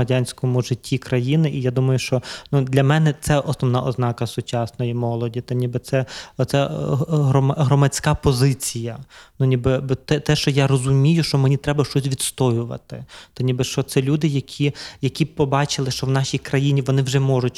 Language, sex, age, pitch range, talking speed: Ukrainian, male, 20-39, 130-145 Hz, 150 wpm